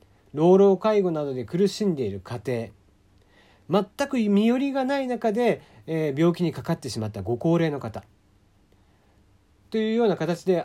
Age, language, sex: 40-59, Japanese, male